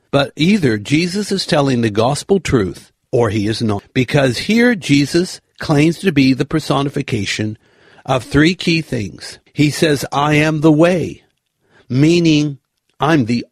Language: English